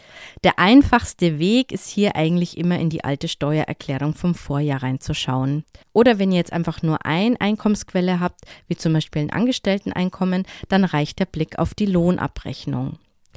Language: German